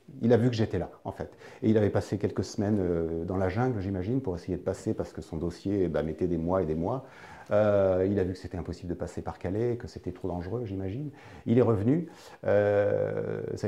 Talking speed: 235 wpm